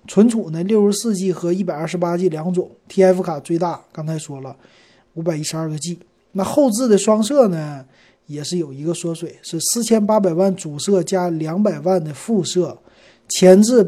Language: Chinese